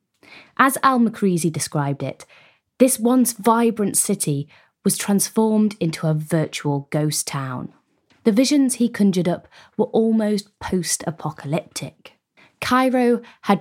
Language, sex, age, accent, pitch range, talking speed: English, female, 20-39, British, 155-220 Hz, 115 wpm